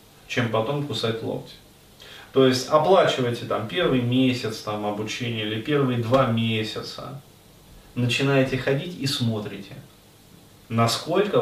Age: 30-49